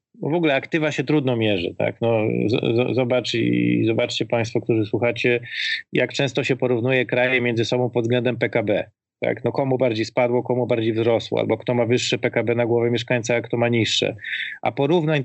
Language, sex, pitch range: Polish, male, 115-145 Hz